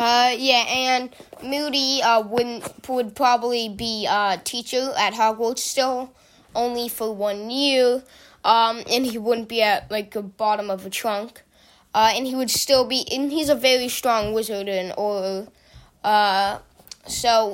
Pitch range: 210-260 Hz